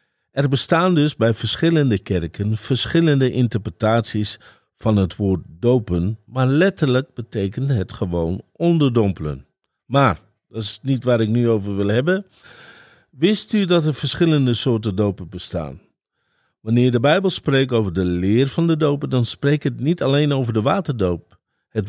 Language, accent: Dutch, Dutch